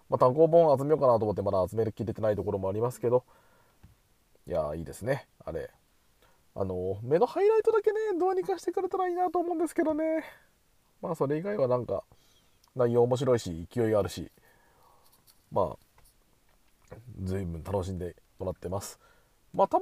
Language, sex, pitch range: Japanese, male, 100-155 Hz